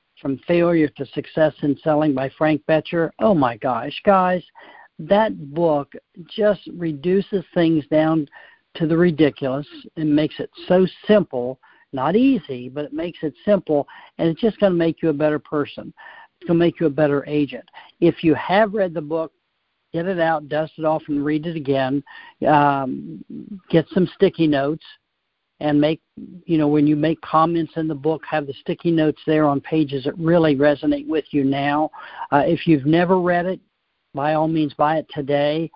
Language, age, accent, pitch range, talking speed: English, 60-79, American, 145-170 Hz, 185 wpm